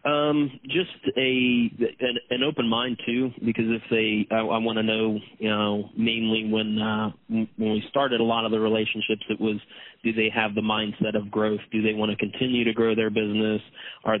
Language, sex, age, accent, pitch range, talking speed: English, male, 30-49, American, 105-110 Hz, 205 wpm